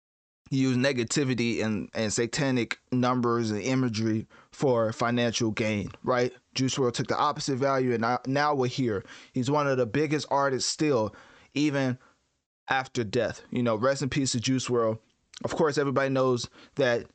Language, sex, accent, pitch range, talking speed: English, male, American, 115-140 Hz, 160 wpm